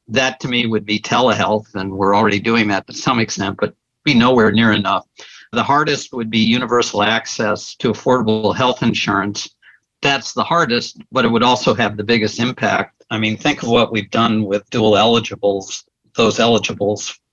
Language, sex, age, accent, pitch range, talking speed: English, male, 50-69, American, 105-120 Hz, 180 wpm